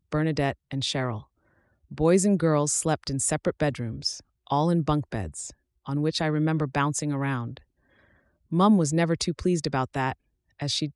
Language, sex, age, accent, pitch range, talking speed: English, female, 30-49, American, 135-165 Hz, 160 wpm